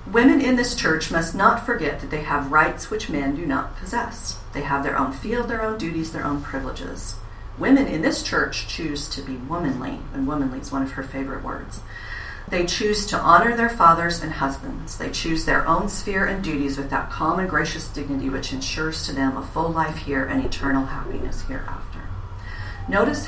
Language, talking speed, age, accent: English, 200 wpm, 40-59, American